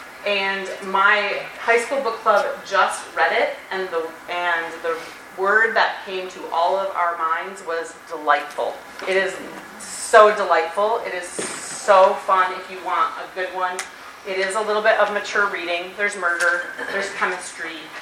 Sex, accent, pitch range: female, American, 175-220 Hz